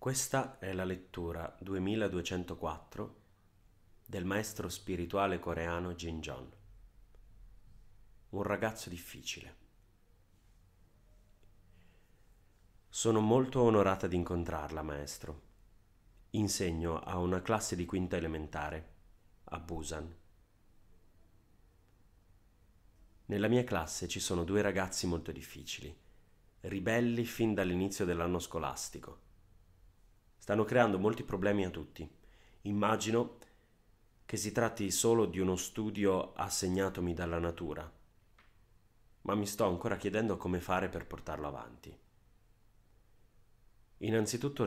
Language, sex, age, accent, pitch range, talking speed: Italian, male, 30-49, native, 90-105 Hz, 95 wpm